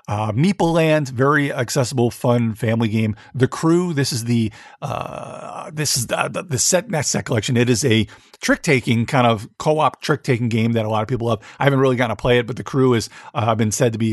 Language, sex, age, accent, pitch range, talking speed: English, male, 40-59, American, 115-145 Hz, 225 wpm